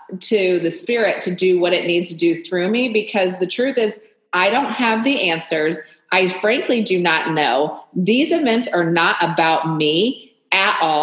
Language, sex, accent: English, female, American